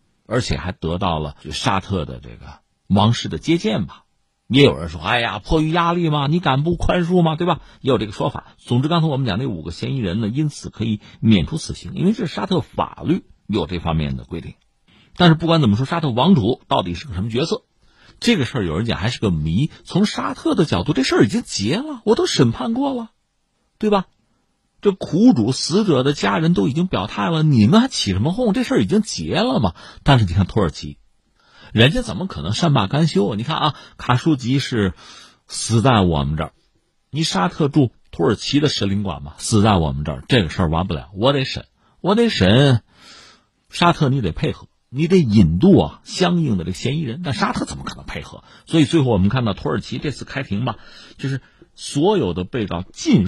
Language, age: Chinese, 50-69